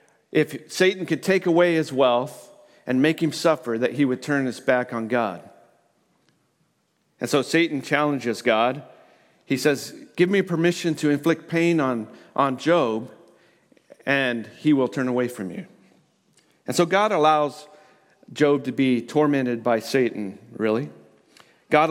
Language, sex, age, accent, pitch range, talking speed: English, male, 40-59, American, 125-165 Hz, 150 wpm